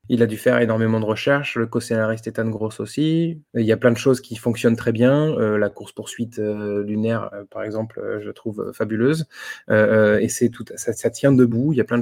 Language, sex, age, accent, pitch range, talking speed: French, male, 20-39, French, 115-140 Hz, 235 wpm